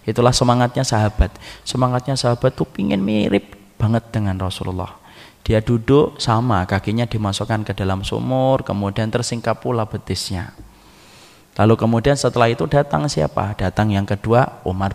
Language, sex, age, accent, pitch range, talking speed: Indonesian, male, 20-39, native, 100-120 Hz, 130 wpm